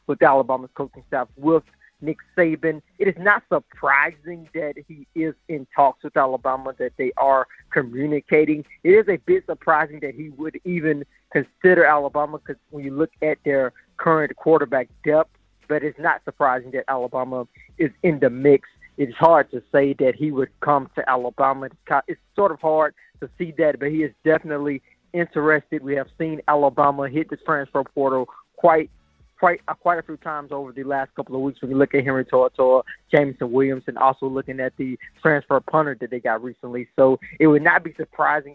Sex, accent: male, American